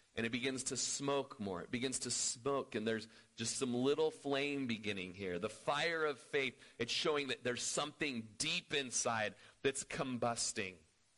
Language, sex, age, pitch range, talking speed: English, male, 40-59, 125-165 Hz, 165 wpm